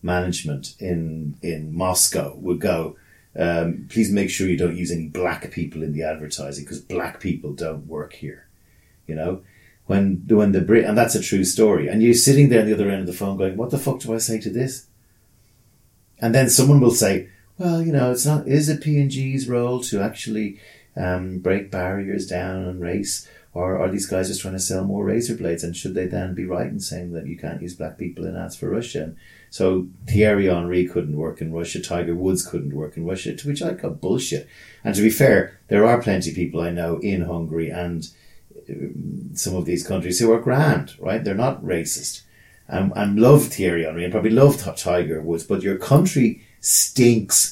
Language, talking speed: English, 210 wpm